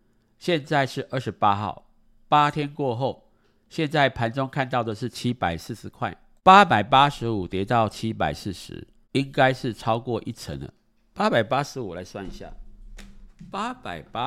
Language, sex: Chinese, male